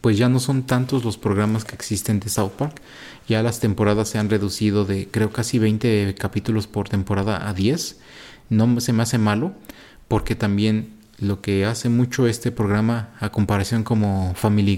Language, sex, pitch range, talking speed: Spanish, male, 105-120 Hz, 180 wpm